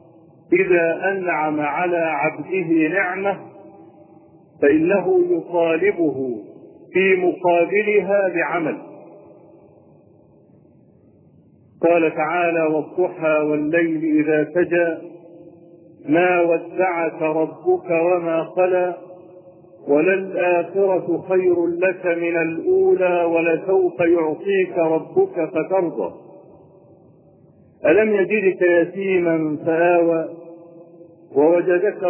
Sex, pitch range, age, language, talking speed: male, 170-200 Hz, 50-69, Arabic, 65 wpm